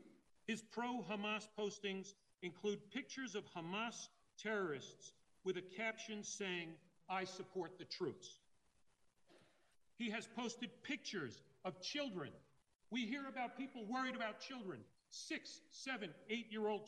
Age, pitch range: 50-69, 185-230 Hz